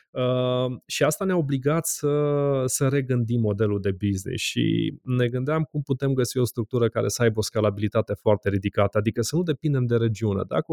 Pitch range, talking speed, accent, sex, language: 110-130 Hz, 180 wpm, native, male, Romanian